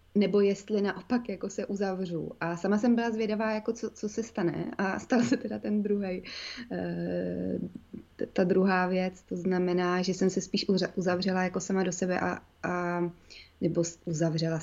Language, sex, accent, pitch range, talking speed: Czech, female, native, 185-230 Hz, 165 wpm